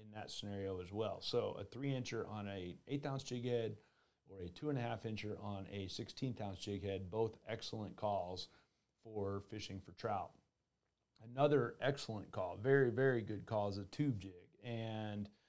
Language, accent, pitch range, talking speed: English, American, 105-125 Hz, 180 wpm